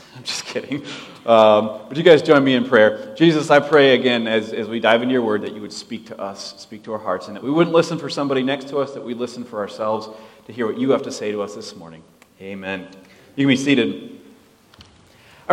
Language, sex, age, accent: English, male, 30-49, American